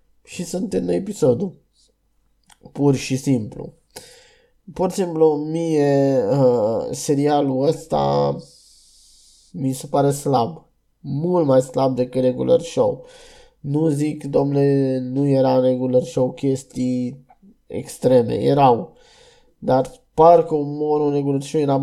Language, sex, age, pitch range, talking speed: Romanian, male, 20-39, 130-165 Hz, 115 wpm